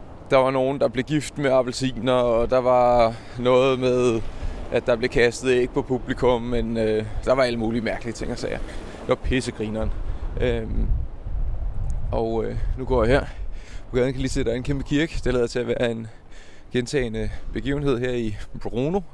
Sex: male